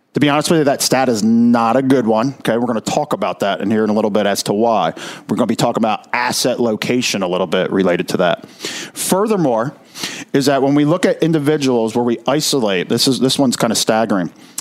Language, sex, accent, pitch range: English, male, American, 115-145 Hz